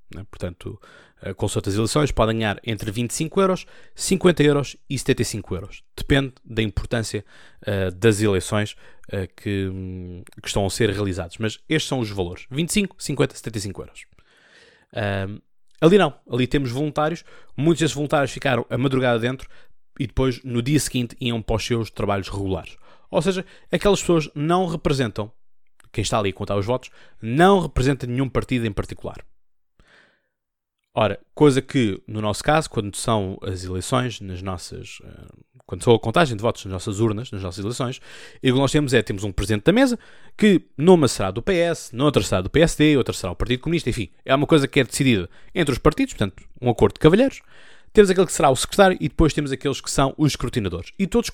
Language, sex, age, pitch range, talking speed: Portuguese, male, 20-39, 105-150 Hz, 185 wpm